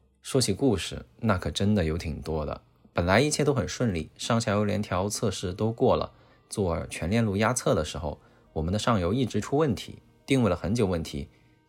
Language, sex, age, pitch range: Chinese, male, 20-39, 90-120 Hz